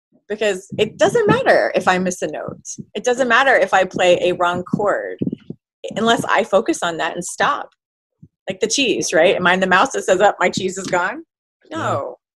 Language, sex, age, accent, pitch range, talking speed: English, female, 30-49, American, 175-245 Hz, 205 wpm